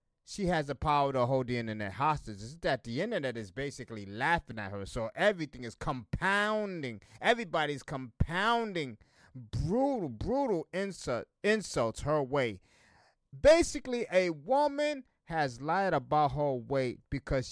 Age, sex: 30-49, male